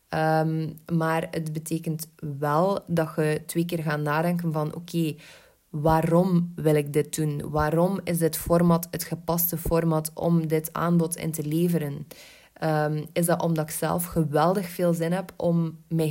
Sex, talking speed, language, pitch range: female, 165 wpm, Dutch, 155-170 Hz